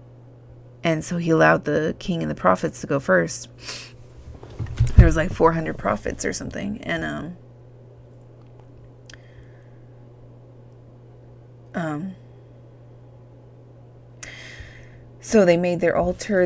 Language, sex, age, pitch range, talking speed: English, female, 30-49, 120-165 Hz, 100 wpm